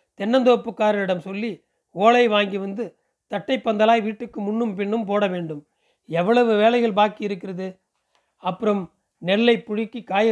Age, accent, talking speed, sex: 40-59, native, 110 wpm, male